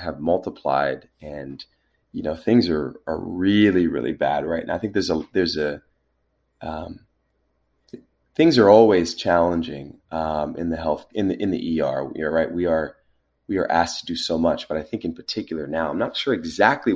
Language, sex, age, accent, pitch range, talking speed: English, male, 30-49, American, 70-95 Hz, 195 wpm